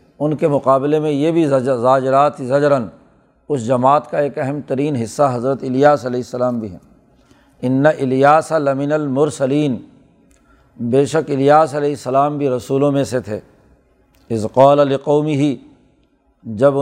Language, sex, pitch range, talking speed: Urdu, male, 135-155 Hz, 145 wpm